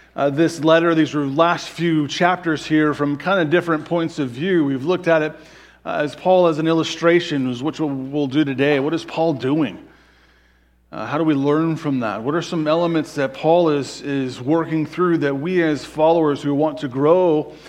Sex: male